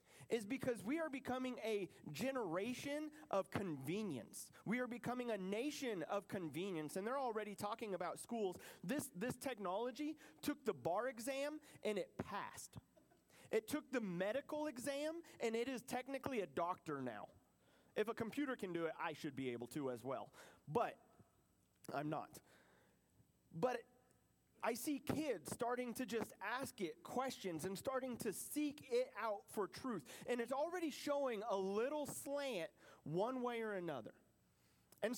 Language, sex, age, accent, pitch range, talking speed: English, male, 30-49, American, 205-275 Hz, 155 wpm